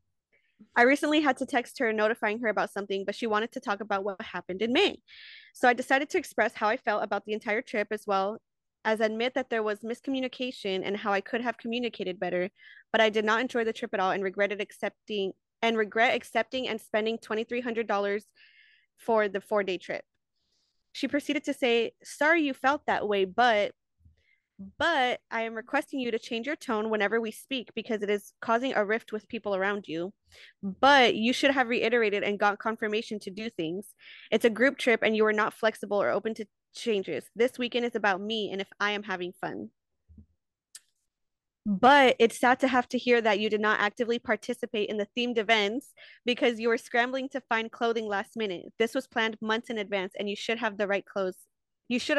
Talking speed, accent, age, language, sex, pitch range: 200 wpm, American, 20-39, English, female, 205-245 Hz